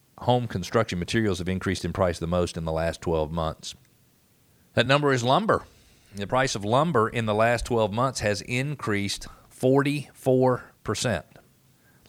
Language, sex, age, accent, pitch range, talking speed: English, male, 40-59, American, 100-120 Hz, 150 wpm